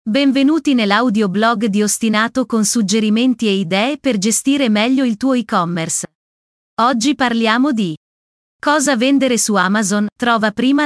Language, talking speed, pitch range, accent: Italian, 135 wpm, 205-260 Hz, native